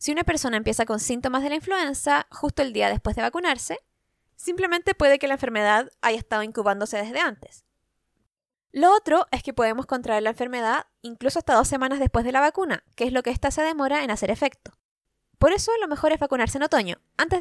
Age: 20-39